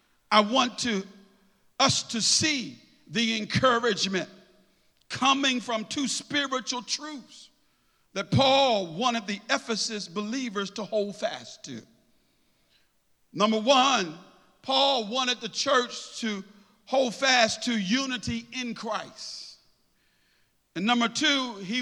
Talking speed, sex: 105 wpm, male